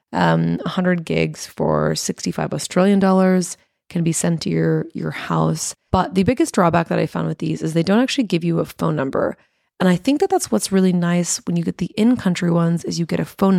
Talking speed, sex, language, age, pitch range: 225 wpm, female, English, 20-39, 165-200 Hz